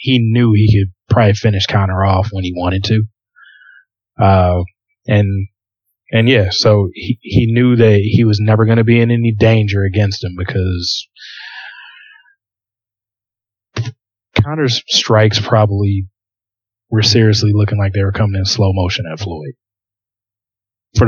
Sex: male